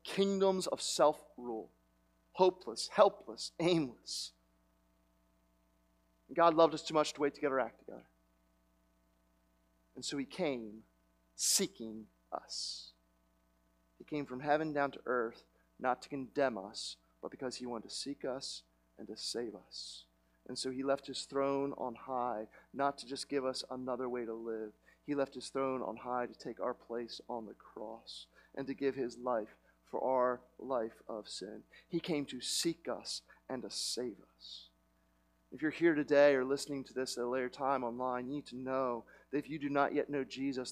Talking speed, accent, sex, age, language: 175 wpm, American, male, 40-59, English